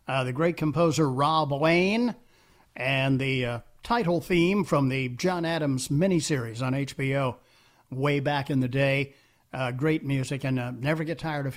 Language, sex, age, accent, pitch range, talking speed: English, male, 50-69, American, 140-190 Hz, 165 wpm